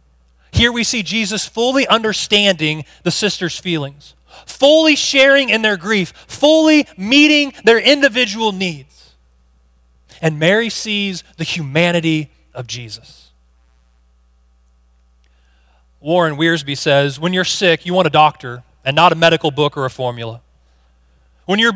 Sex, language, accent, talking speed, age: male, English, American, 125 wpm, 30-49